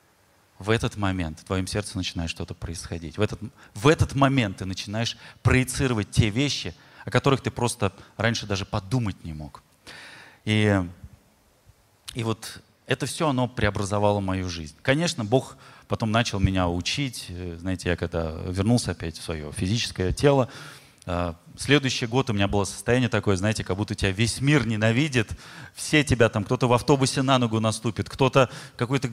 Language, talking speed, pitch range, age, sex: Russian, 155 wpm, 95-125 Hz, 30-49, male